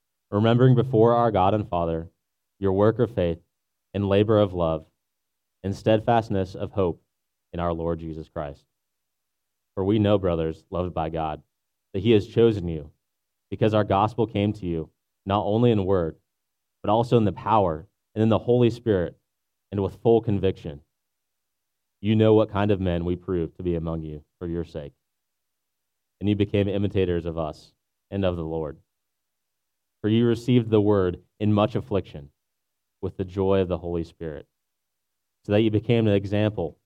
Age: 30-49